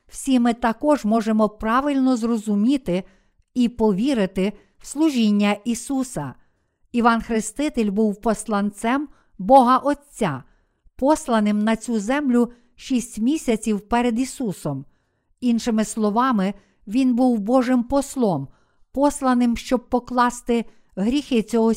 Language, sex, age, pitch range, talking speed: Ukrainian, female, 50-69, 215-260 Hz, 100 wpm